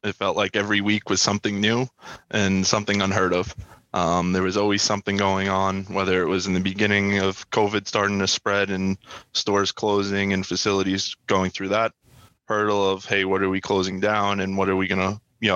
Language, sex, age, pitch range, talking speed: English, male, 20-39, 95-105 Hz, 205 wpm